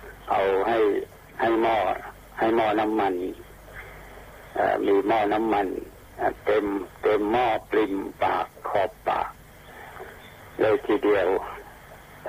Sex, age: male, 60-79